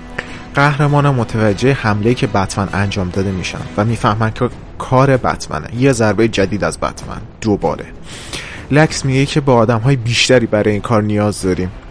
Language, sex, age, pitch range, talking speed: Persian, male, 30-49, 105-125 Hz, 160 wpm